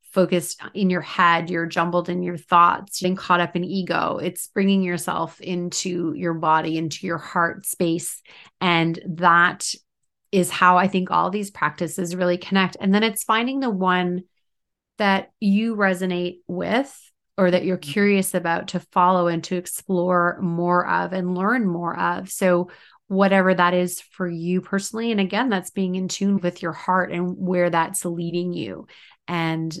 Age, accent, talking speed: 30-49, American, 165 wpm